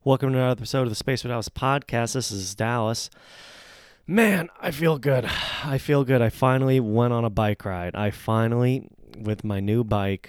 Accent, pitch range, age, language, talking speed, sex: American, 95-110 Hz, 20-39, English, 190 wpm, male